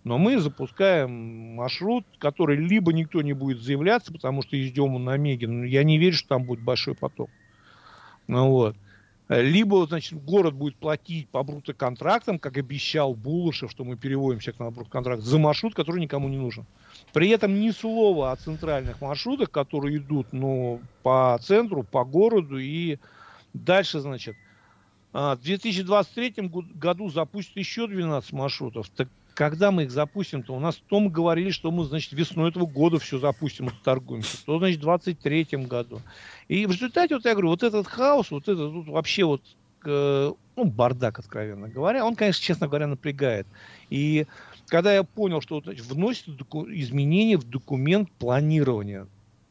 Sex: male